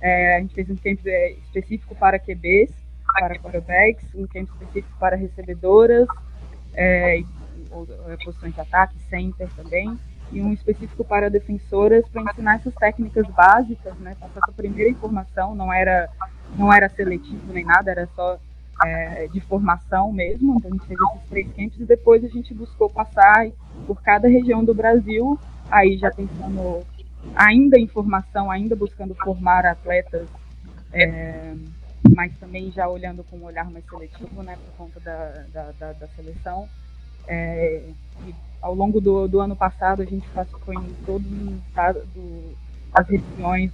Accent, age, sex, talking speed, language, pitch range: Brazilian, 20-39, female, 160 wpm, Portuguese, 175-210 Hz